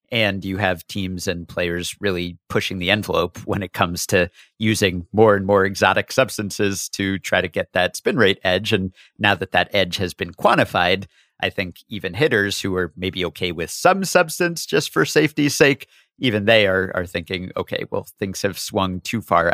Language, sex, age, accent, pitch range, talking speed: English, male, 40-59, American, 95-120 Hz, 195 wpm